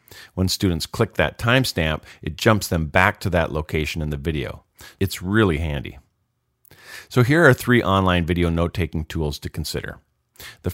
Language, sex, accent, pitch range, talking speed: English, male, American, 80-110 Hz, 160 wpm